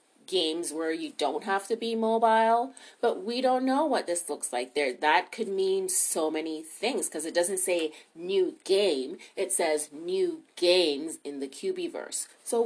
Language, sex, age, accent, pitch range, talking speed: English, female, 30-49, American, 170-245 Hz, 175 wpm